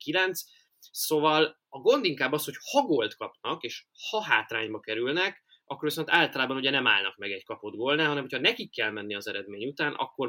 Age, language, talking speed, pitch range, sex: 20-39, Hungarian, 185 wpm, 110-160 Hz, male